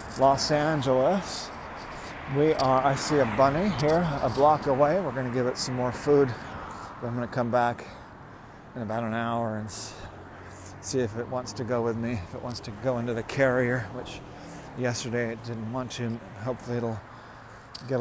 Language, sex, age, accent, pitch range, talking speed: English, male, 40-59, American, 115-135 Hz, 185 wpm